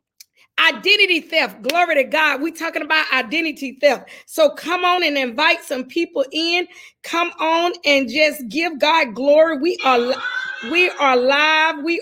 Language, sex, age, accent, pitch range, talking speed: English, female, 40-59, American, 250-310 Hz, 150 wpm